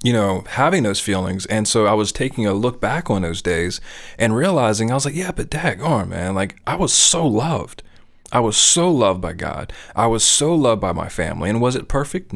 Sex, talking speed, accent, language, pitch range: male, 230 wpm, American, English, 95-115 Hz